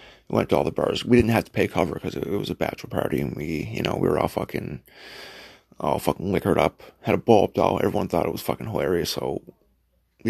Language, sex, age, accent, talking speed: English, male, 30-49, American, 240 wpm